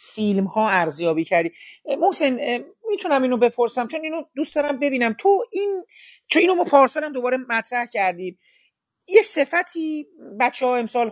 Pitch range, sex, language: 195-255 Hz, male, Persian